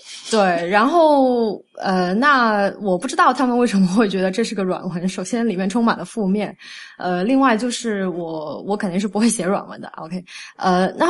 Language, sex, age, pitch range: Chinese, female, 20-39, 190-250 Hz